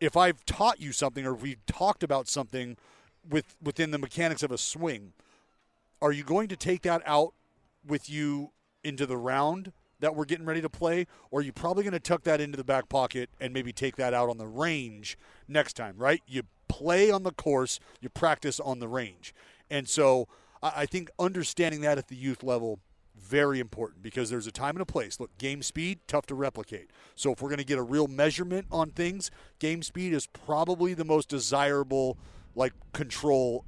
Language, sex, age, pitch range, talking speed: English, male, 40-59, 125-155 Hz, 205 wpm